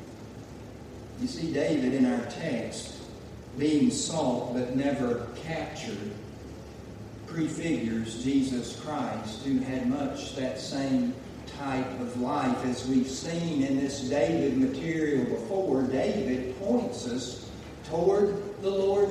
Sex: male